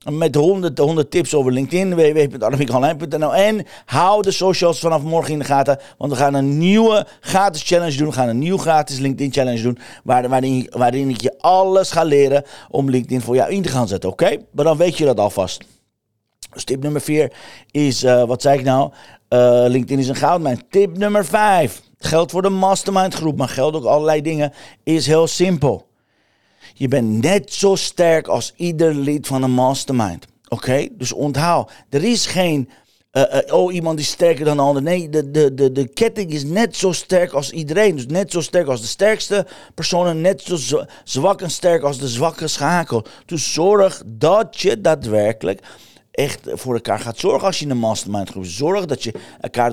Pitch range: 130-175 Hz